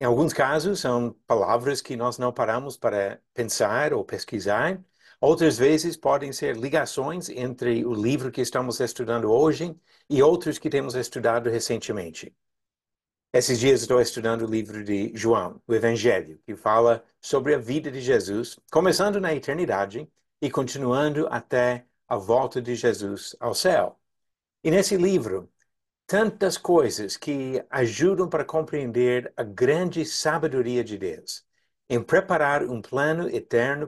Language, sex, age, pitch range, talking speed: Portuguese, male, 60-79, 115-155 Hz, 140 wpm